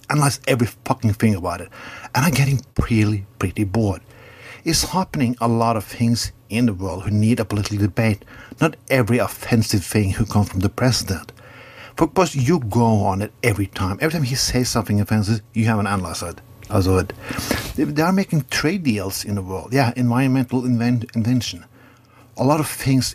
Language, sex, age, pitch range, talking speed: English, male, 60-79, 105-125 Hz, 185 wpm